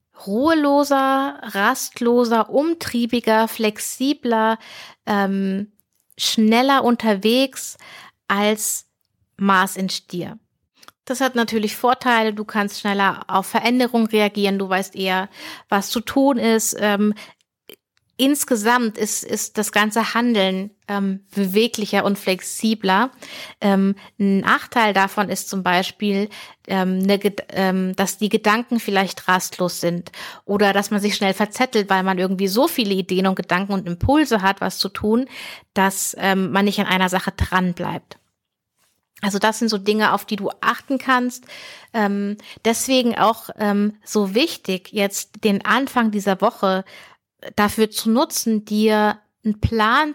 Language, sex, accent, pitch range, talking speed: German, female, German, 195-240 Hz, 135 wpm